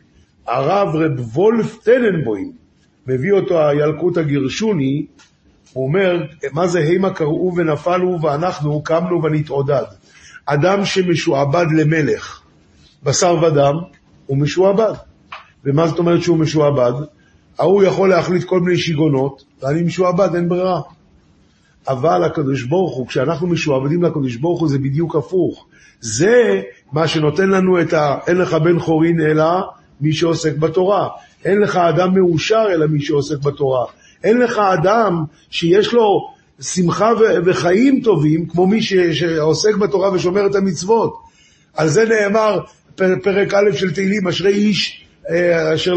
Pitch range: 160-200 Hz